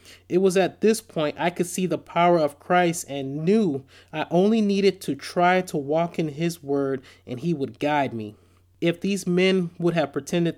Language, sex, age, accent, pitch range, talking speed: English, male, 30-49, American, 140-185 Hz, 200 wpm